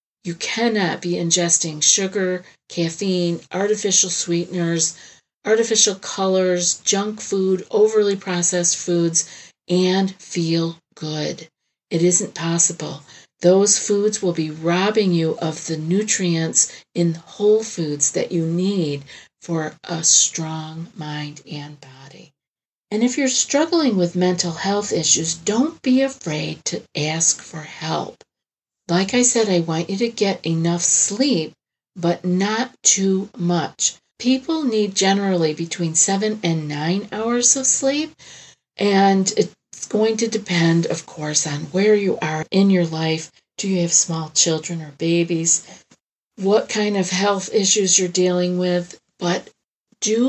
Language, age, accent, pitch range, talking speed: English, 50-69, American, 165-205 Hz, 135 wpm